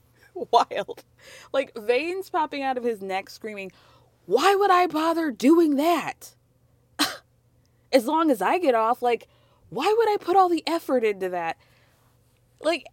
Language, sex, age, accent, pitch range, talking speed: English, female, 20-39, American, 185-280 Hz, 150 wpm